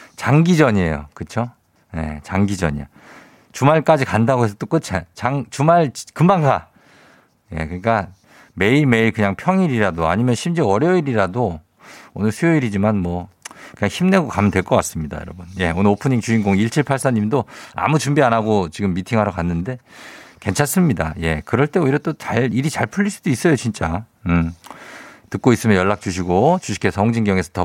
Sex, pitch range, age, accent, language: male, 90-140 Hz, 50-69, native, Korean